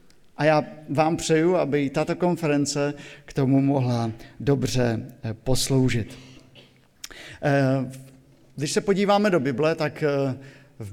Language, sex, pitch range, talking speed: Slovak, male, 135-175 Hz, 105 wpm